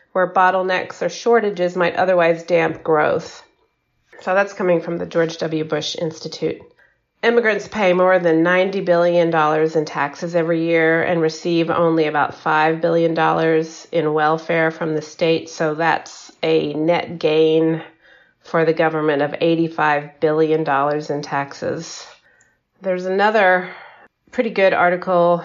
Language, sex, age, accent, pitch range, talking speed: English, female, 30-49, American, 160-180 Hz, 130 wpm